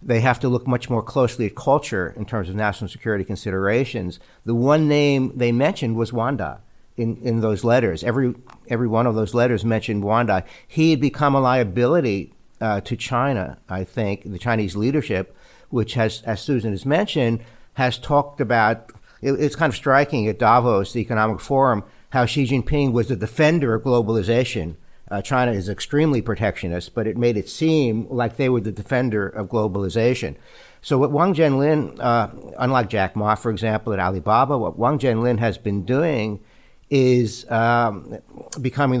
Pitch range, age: 110-130 Hz, 60-79